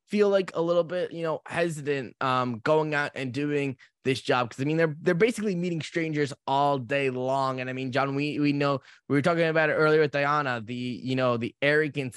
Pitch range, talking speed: 120-150 Hz, 225 wpm